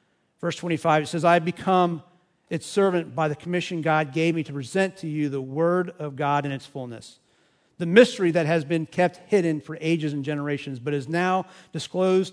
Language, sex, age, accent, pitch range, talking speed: English, male, 50-69, American, 150-185 Hz, 195 wpm